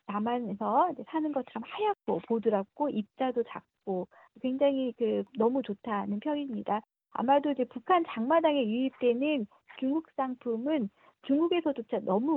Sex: female